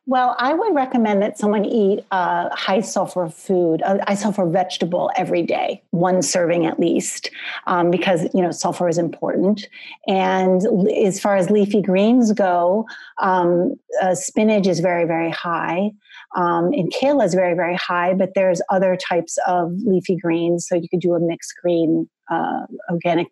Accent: American